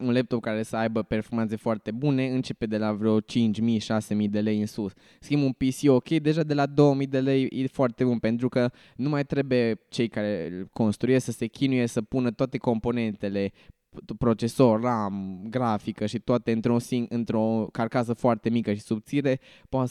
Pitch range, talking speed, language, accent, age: 110-130 Hz, 175 wpm, Romanian, native, 20-39